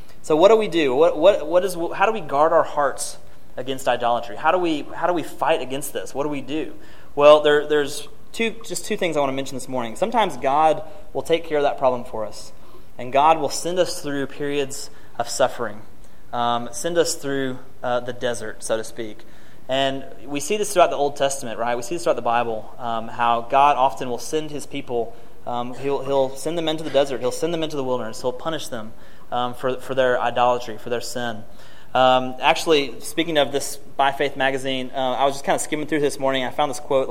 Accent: American